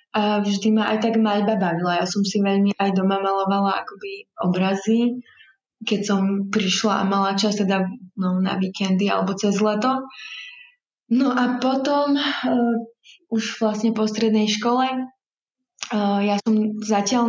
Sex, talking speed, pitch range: female, 145 wpm, 195-220 Hz